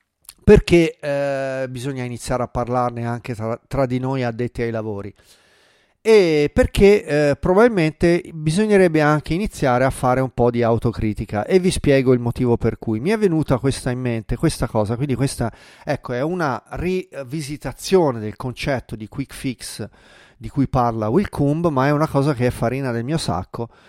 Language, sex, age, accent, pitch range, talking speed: Italian, male, 30-49, native, 120-165 Hz, 170 wpm